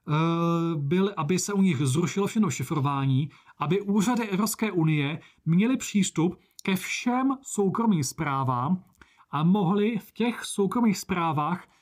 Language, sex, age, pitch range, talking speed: Czech, male, 30-49, 140-195 Hz, 120 wpm